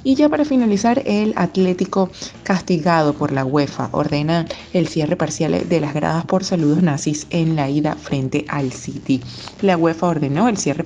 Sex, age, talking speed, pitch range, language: female, 20-39, 170 wpm, 145-180 Hz, Spanish